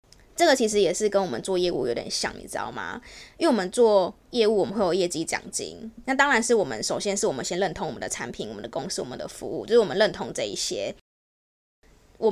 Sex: female